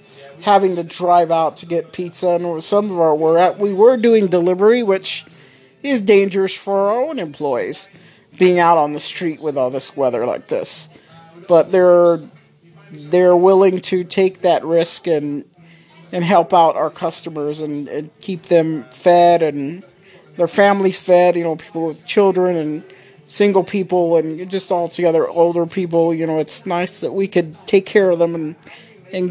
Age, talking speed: 50-69, 170 wpm